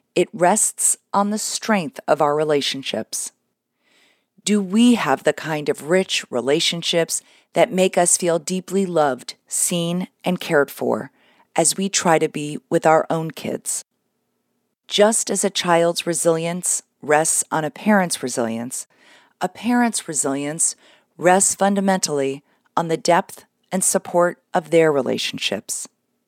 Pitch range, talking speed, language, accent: 155-195 Hz, 130 wpm, English, American